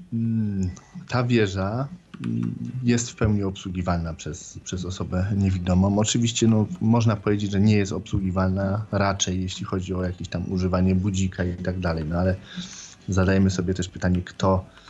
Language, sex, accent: Polish, male, native